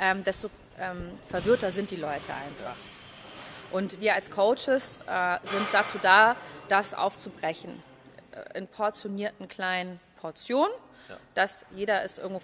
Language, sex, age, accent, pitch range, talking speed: German, female, 30-49, German, 180-225 Hz, 130 wpm